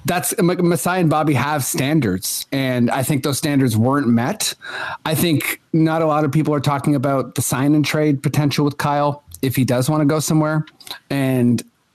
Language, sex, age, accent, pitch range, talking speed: English, male, 30-49, American, 130-160 Hz, 190 wpm